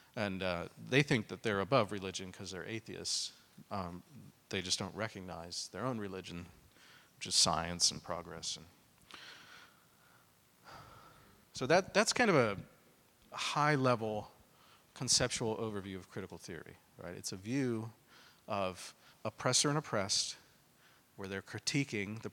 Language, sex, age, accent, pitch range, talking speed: English, male, 40-59, American, 95-130 Hz, 130 wpm